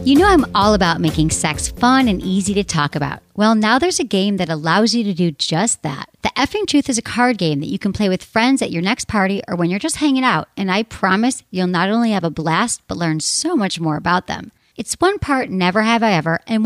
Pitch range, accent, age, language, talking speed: 175-250 Hz, American, 40-59, English, 260 wpm